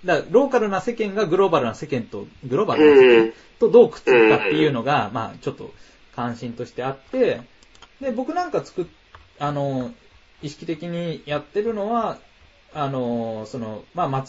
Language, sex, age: Japanese, male, 20-39